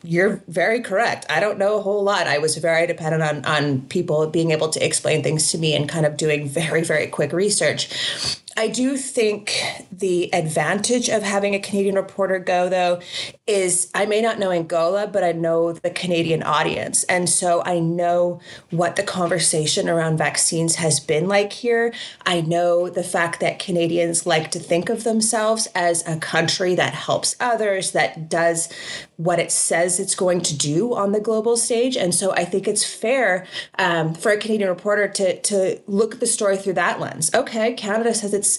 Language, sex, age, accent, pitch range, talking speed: English, female, 30-49, American, 165-200 Hz, 190 wpm